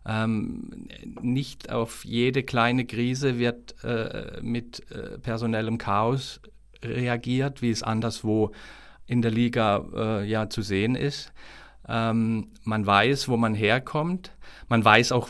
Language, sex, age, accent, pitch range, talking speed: German, male, 50-69, German, 110-135 Hz, 125 wpm